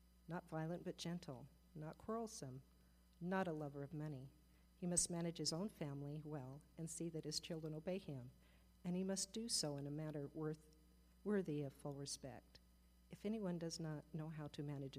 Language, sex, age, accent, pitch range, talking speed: English, female, 50-69, American, 130-165 Hz, 180 wpm